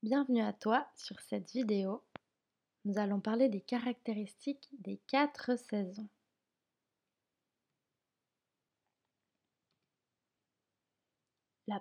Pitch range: 190-245 Hz